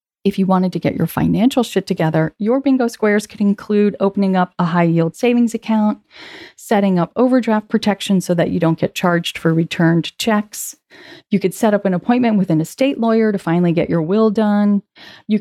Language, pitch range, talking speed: English, 170-220 Hz, 195 wpm